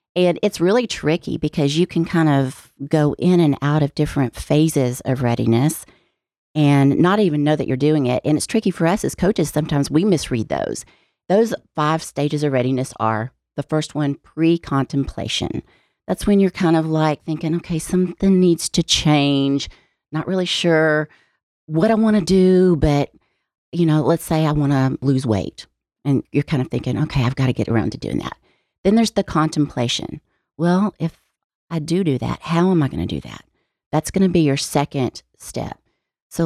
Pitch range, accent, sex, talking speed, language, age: 140-170 Hz, American, female, 190 wpm, English, 40-59